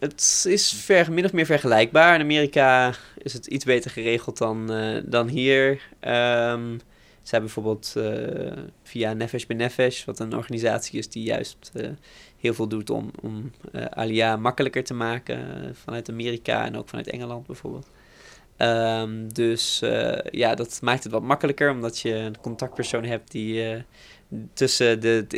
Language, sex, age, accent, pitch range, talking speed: Dutch, male, 20-39, Dutch, 110-125 Hz, 165 wpm